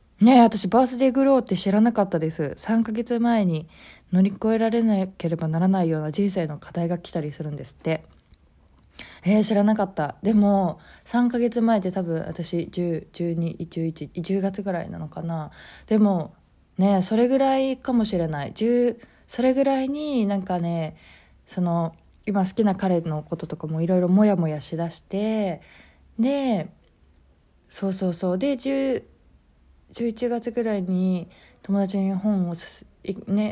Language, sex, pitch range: Japanese, female, 165-220 Hz